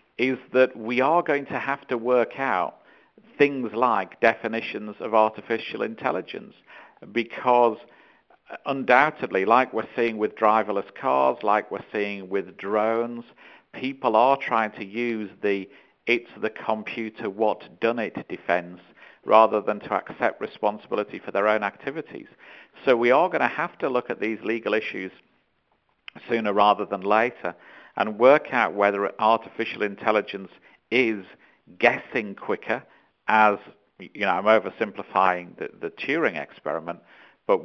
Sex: male